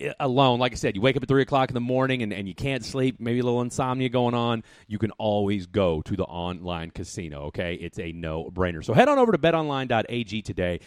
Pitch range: 100-130 Hz